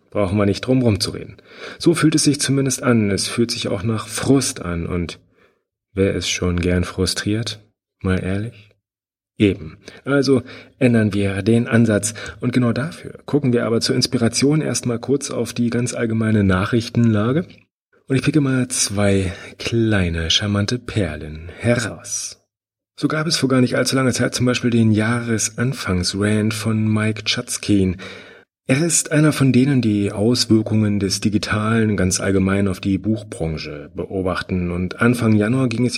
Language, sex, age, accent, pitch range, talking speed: German, male, 30-49, German, 95-125 Hz, 155 wpm